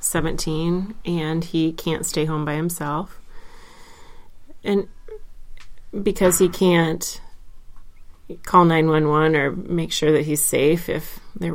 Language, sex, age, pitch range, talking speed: English, female, 30-49, 155-180 Hz, 115 wpm